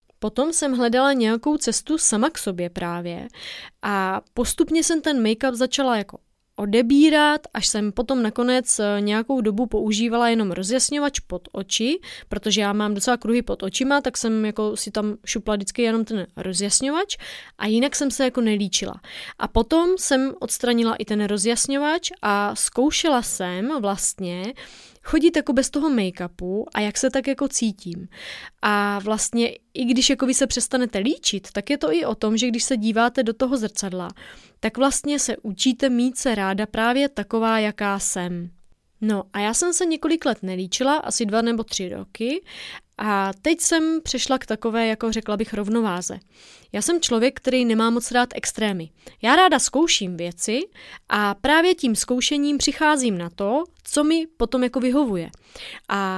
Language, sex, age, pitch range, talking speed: Czech, female, 20-39, 205-270 Hz, 165 wpm